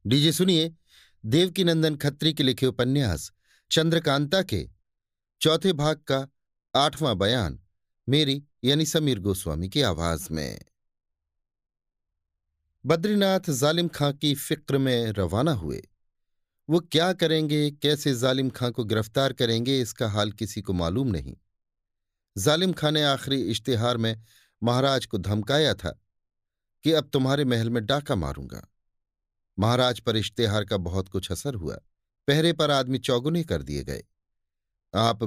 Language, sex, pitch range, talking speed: Hindi, male, 100-150 Hz, 130 wpm